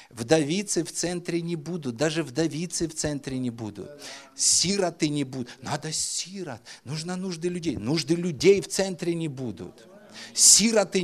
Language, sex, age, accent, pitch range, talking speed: Russian, male, 50-69, native, 140-210 Hz, 140 wpm